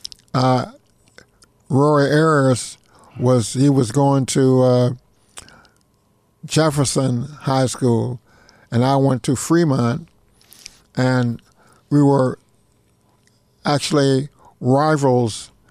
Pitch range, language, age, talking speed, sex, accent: 130-150 Hz, English, 60-79, 80 wpm, male, American